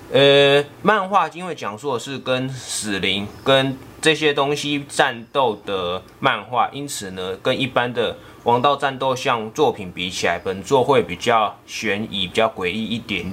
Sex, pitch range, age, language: male, 105-140 Hz, 20-39, Chinese